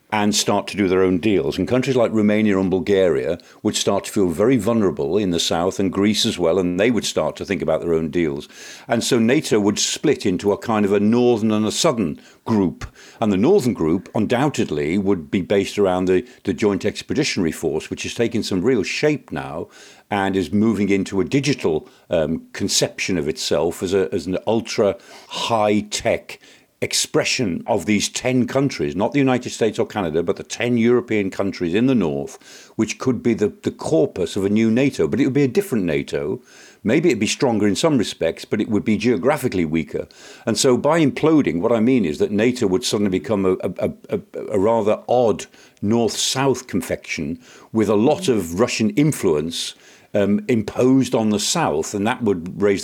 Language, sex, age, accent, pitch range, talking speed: English, male, 50-69, British, 95-120 Hz, 200 wpm